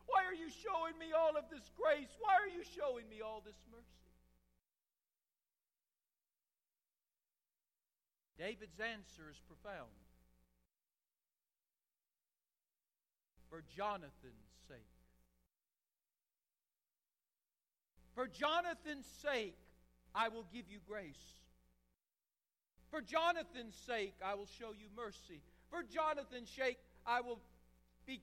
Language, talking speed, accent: English, 100 wpm, American